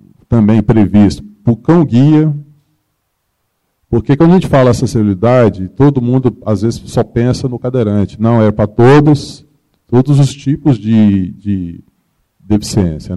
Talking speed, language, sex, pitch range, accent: 130 wpm, Portuguese, male, 100-125 Hz, Brazilian